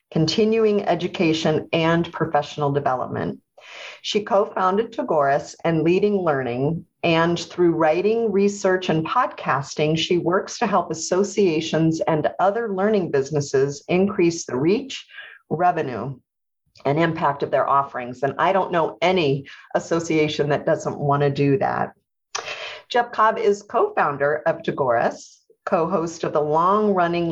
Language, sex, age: English, female, 40-59